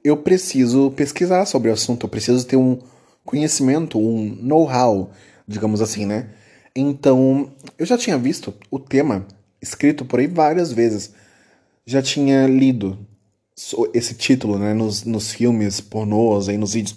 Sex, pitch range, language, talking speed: male, 110-140 Hz, Portuguese, 145 wpm